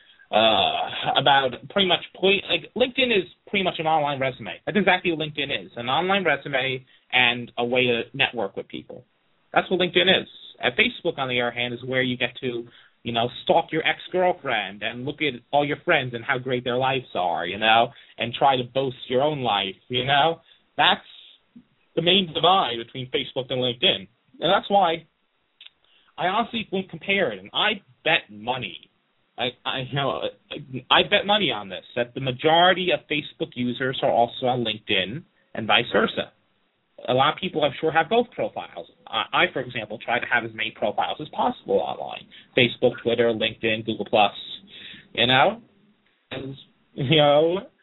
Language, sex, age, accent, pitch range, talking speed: English, male, 30-49, American, 125-180 Hz, 180 wpm